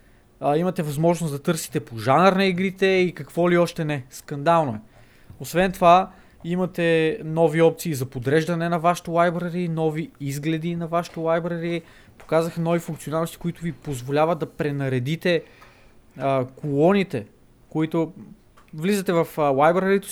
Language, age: Bulgarian, 20-39